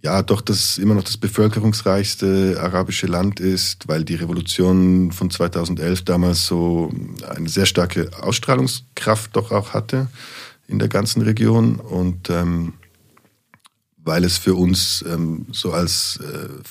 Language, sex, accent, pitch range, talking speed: German, male, German, 90-105 Hz, 135 wpm